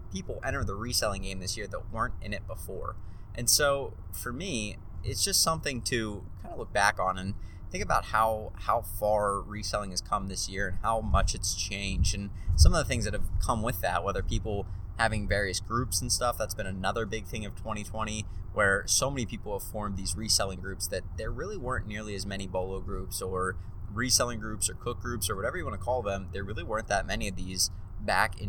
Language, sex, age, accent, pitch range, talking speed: English, male, 20-39, American, 95-110 Hz, 220 wpm